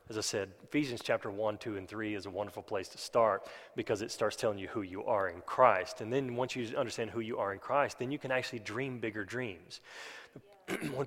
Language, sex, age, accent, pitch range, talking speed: English, male, 30-49, American, 125-190 Hz, 235 wpm